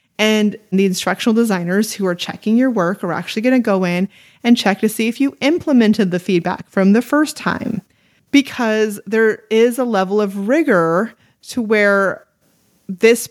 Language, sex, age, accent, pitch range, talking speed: English, female, 30-49, American, 185-230 Hz, 170 wpm